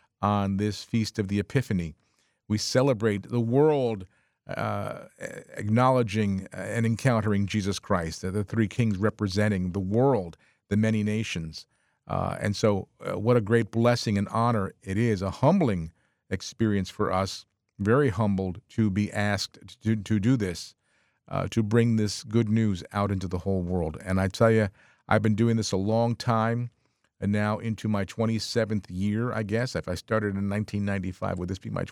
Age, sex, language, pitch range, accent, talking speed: 50-69, male, English, 100-115 Hz, American, 160 wpm